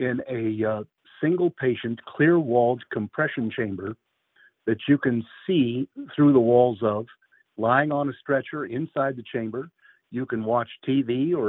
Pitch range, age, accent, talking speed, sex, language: 115-140 Hz, 50-69, American, 145 wpm, male, English